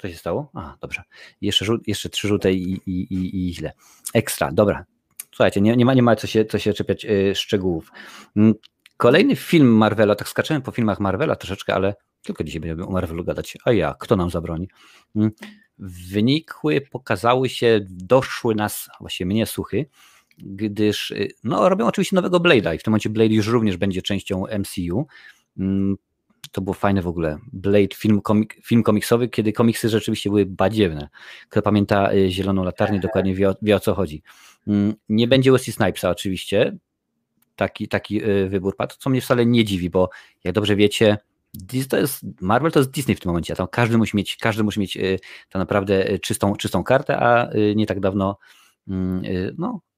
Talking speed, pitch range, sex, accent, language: 165 wpm, 95-115 Hz, male, native, Polish